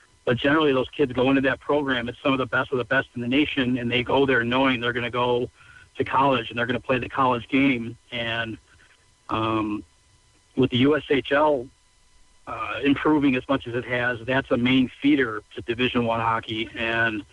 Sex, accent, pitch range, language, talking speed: male, American, 120-140 Hz, English, 205 wpm